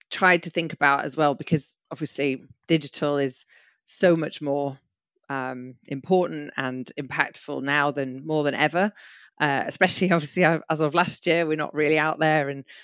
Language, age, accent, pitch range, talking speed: English, 30-49, British, 135-155 Hz, 165 wpm